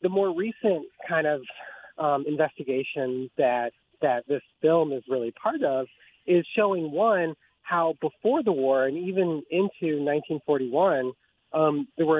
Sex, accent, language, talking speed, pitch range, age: male, American, English, 145 wpm, 130-165 Hz, 30-49